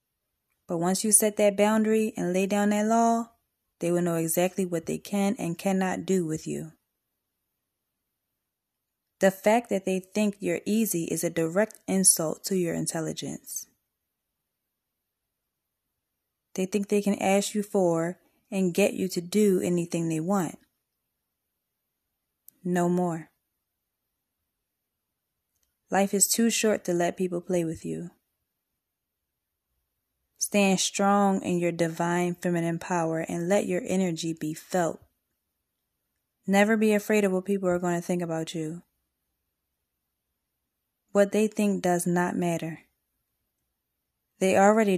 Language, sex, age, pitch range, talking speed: English, female, 20-39, 170-200 Hz, 130 wpm